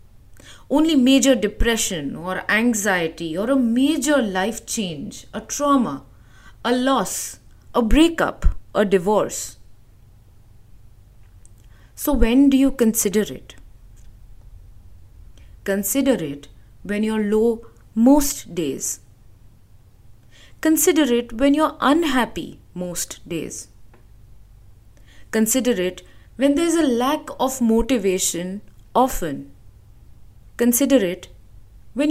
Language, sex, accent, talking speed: English, female, Indian, 100 wpm